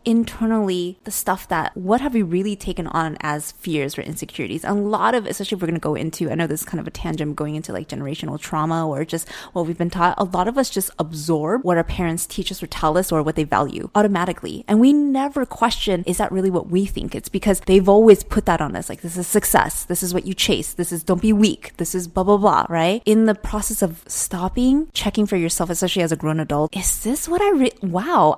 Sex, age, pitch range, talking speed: female, 20-39, 170-225 Hz, 250 wpm